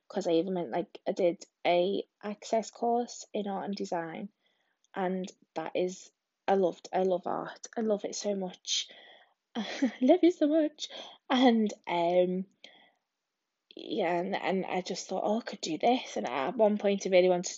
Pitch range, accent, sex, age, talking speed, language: 175-210 Hz, British, female, 20-39, 180 wpm, English